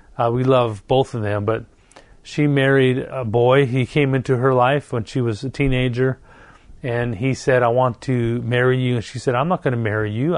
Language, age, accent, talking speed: English, 40-59, American, 220 wpm